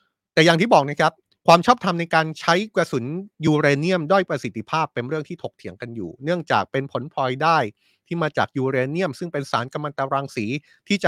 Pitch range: 125-170 Hz